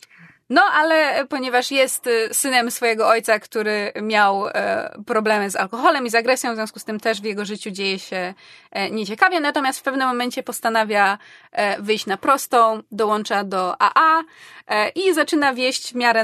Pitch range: 210-270 Hz